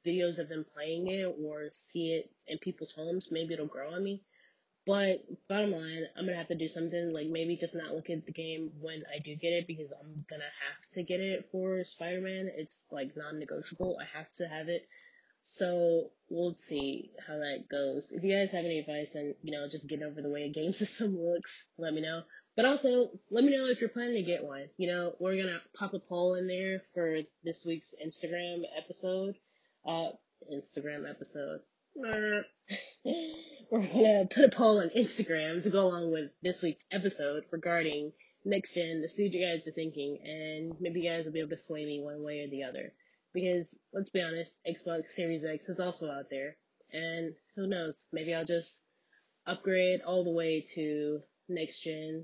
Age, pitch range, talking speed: 20-39, 155-185 Hz, 200 wpm